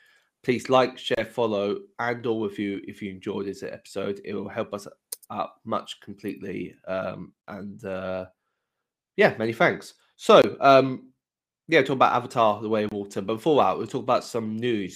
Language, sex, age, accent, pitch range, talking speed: English, male, 20-39, British, 100-120 Hz, 175 wpm